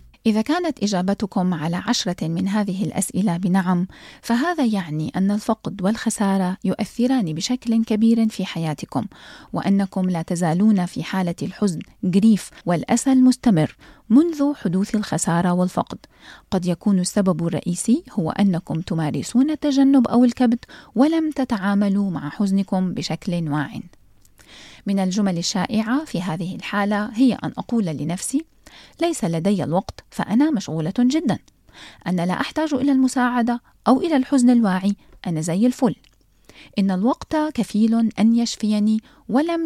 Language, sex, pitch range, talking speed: Arabic, female, 180-240 Hz, 125 wpm